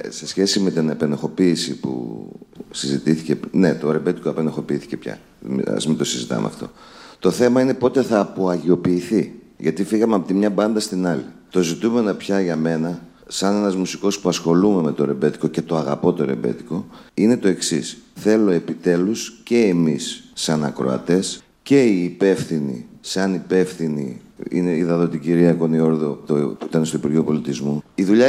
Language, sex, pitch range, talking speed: Greek, male, 85-115 Hz, 155 wpm